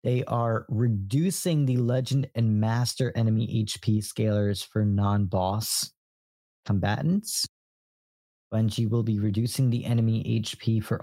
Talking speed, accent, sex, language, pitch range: 120 wpm, American, male, English, 105-130 Hz